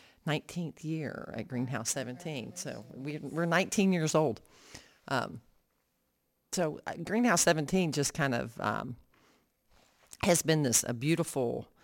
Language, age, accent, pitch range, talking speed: English, 40-59, American, 125-150 Hz, 115 wpm